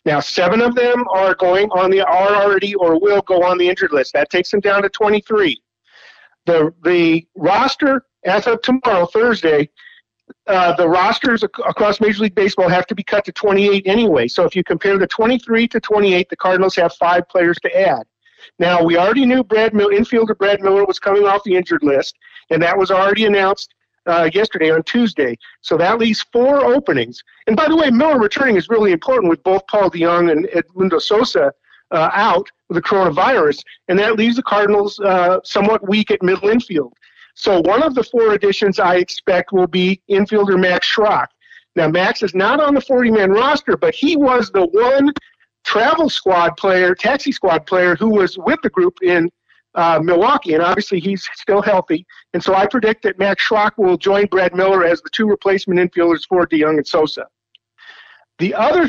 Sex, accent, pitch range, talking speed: male, American, 180-225 Hz, 195 wpm